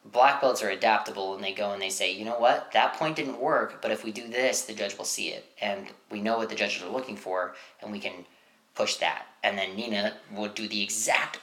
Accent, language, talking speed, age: American, English, 250 wpm, 20-39